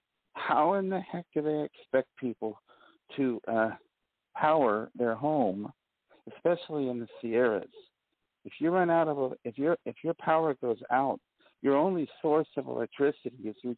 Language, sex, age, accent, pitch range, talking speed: English, male, 50-69, American, 130-175 Hz, 150 wpm